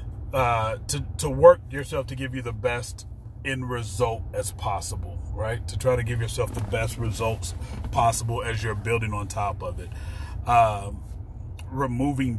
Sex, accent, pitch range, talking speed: male, American, 100-125 Hz, 160 wpm